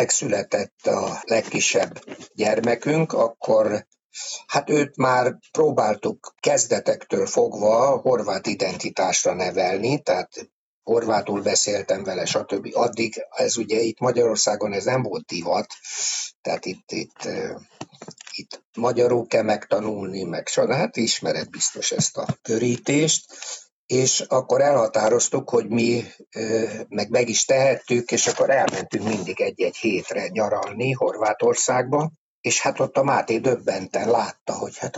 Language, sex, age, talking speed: Hungarian, male, 60-79, 120 wpm